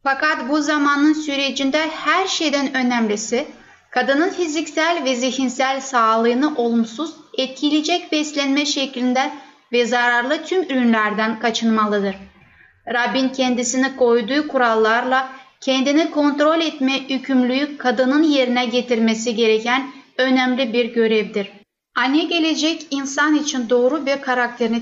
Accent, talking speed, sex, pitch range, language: native, 105 wpm, female, 235-290 Hz, Turkish